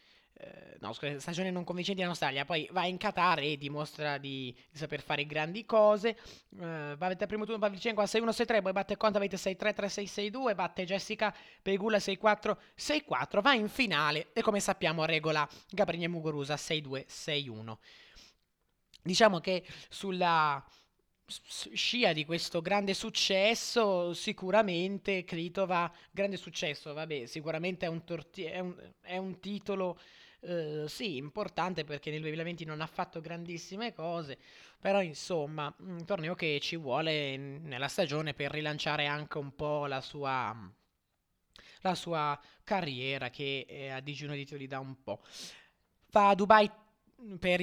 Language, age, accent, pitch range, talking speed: Italian, 20-39, native, 155-205 Hz, 140 wpm